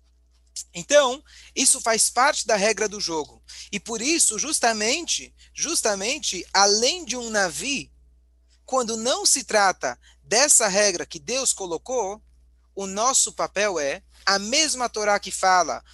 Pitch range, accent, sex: 165-240 Hz, Brazilian, male